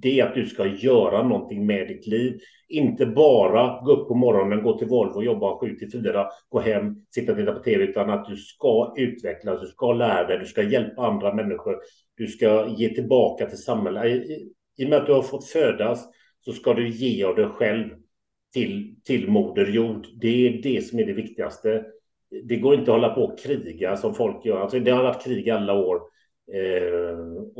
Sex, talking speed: male, 195 wpm